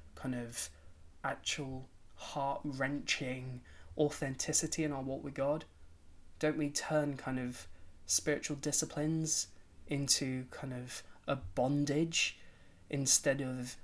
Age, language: 20-39, English